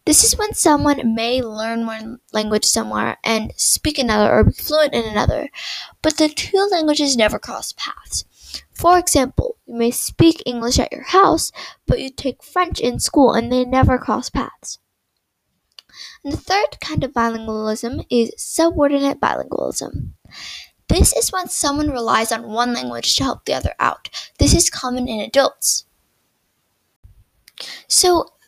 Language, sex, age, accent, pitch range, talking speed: English, female, 10-29, American, 230-305 Hz, 150 wpm